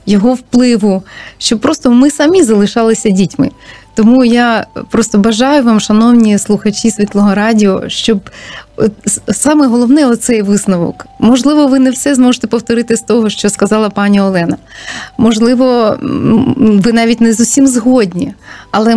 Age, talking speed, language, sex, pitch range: 20-39, 130 wpm, Ukrainian, female, 200-245 Hz